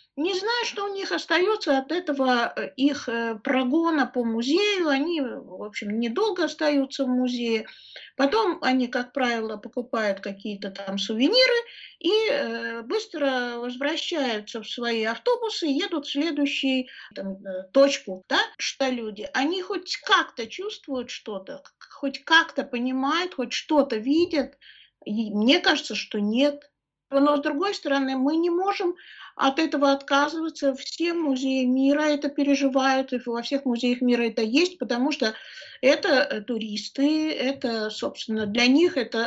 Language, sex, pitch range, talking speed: Russian, female, 245-320 Hz, 135 wpm